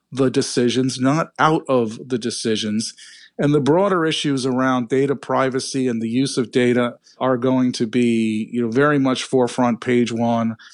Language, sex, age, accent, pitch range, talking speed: English, male, 40-59, American, 115-135 Hz, 170 wpm